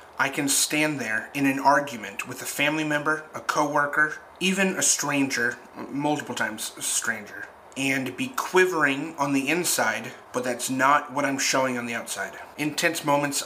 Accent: American